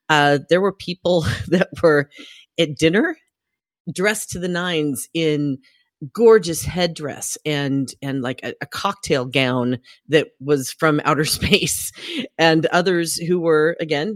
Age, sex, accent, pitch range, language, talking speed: 40-59, female, American, 135-175 Hz, English, 135 wpm